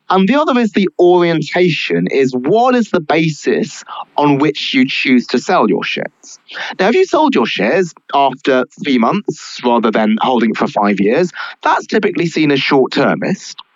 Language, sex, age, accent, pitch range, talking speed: English, male, 30-49, British, 125-180 Hz, 175 wpm